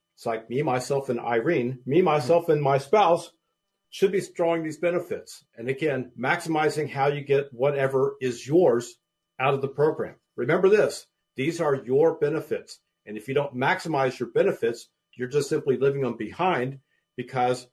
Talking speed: 165 wpm